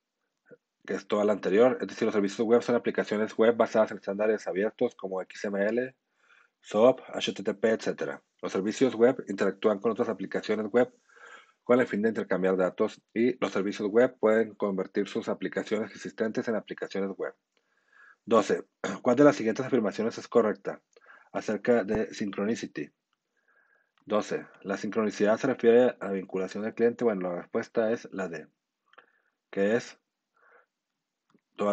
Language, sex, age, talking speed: Spanish, male, 40-59, 150 wpm